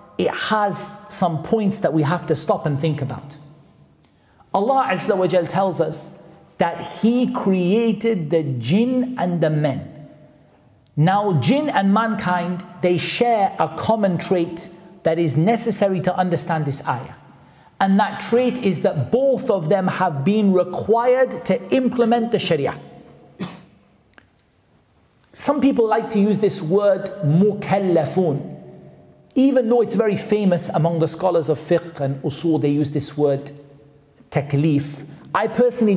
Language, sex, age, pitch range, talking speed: English, male, 40-59, 160-215 Hz, 140 wpm